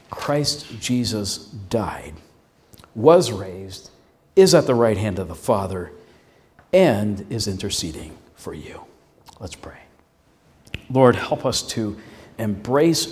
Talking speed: 115 wpm